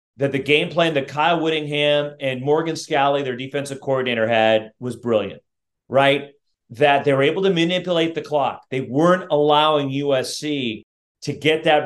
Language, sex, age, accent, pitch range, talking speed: English, male, 40-59, American, 150-200 Hz, 160 wpm